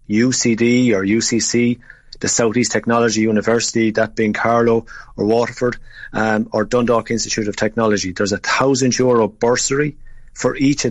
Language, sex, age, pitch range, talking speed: English, male, 30-49, 105-120 Hz, 145 wpm